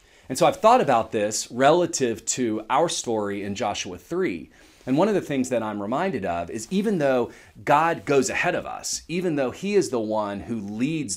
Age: 40-59